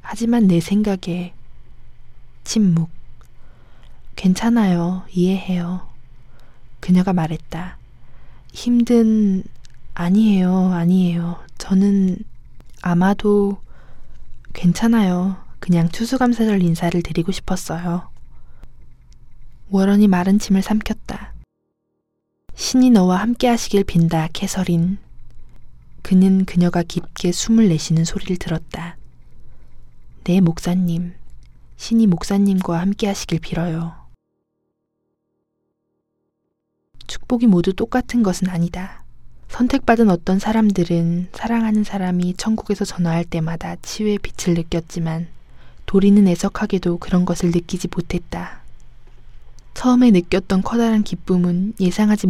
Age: 20-39